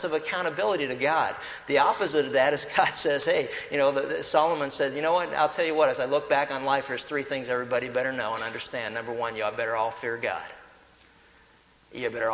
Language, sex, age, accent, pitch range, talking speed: English, male, 50-69, American, 125-155 Hz, 230 wpm